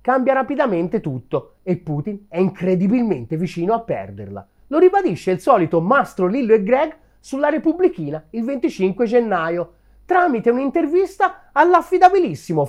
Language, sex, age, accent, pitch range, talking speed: Italian, male, 30-49, native, 175-270 Hz, 125 wpm